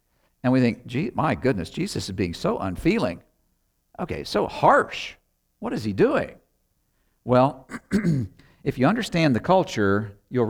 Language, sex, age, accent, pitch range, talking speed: English, male, 50-69, American, 95-140 Hz, 145 wpm